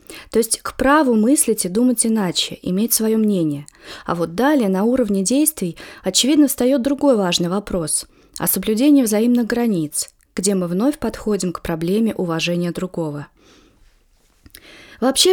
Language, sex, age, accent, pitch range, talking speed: Russian, female, 20-39, native, 185-260 Hz, 140 wpm